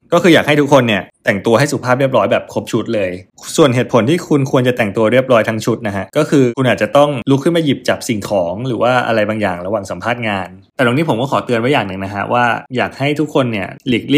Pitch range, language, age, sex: 105-135 Hz, Thai, 20-39, male